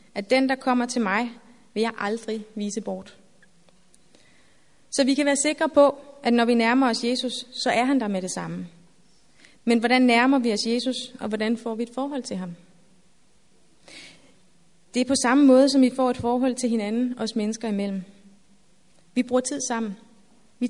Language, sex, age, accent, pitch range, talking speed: Danish, female, 30-49, native, 220-255 Hz, 185 wpm